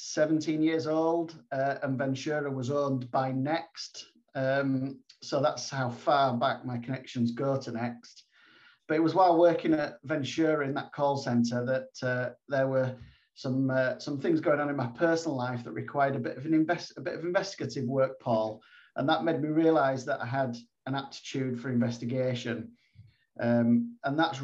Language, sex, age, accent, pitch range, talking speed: English, male, 40-59, British, 120-140 Hz, 180 wpm